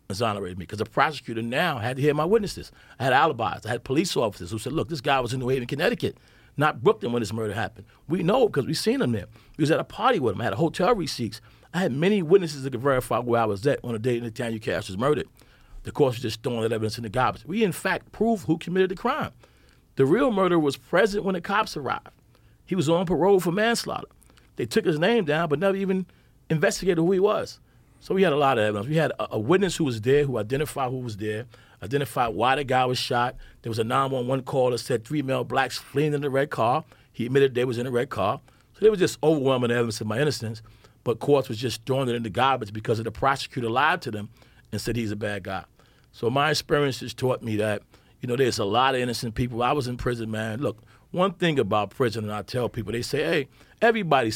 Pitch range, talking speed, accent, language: 115-155 Hz, 255 wpm, American, English